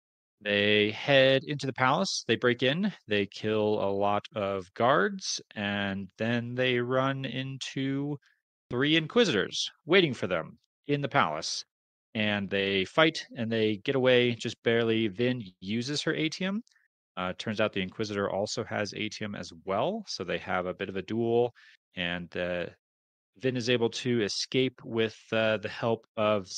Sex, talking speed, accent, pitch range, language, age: male, 160 wpm, American, 100-125 Hz, English, 30-49